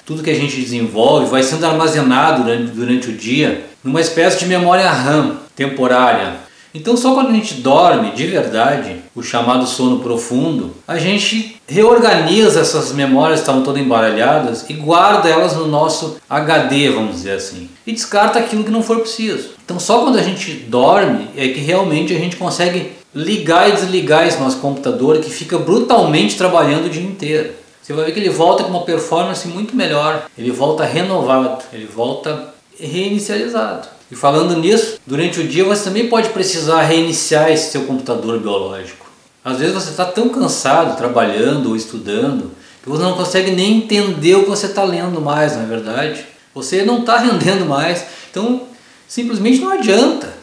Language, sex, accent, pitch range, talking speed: Portuguese, male, Brazilian, 140-195 Hz, 170 wpm